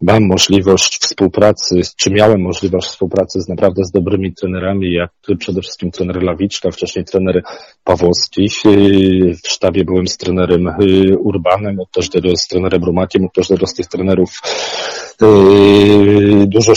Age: 40-59